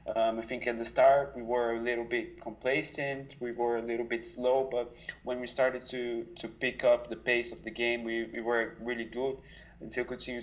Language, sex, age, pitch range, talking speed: English, male, 20-39, 115-125 Hz, 220 wpm